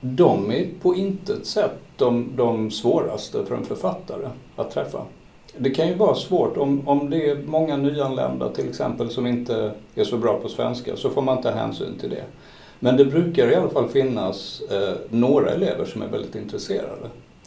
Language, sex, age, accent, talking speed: Swedish, male, 60-79, native, 185 wpm